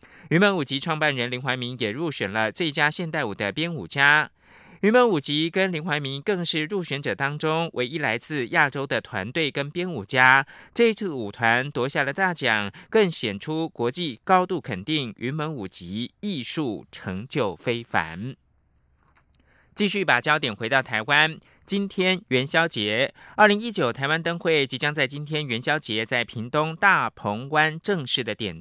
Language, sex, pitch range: German, male, 125-175 Hz